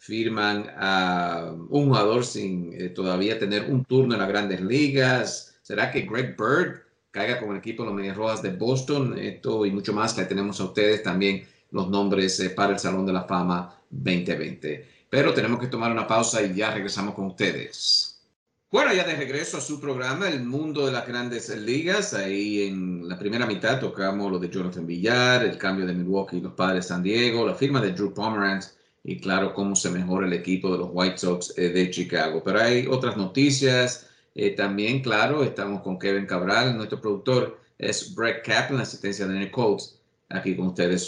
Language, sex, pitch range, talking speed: English, male, 95-130 Hz, 190 wpm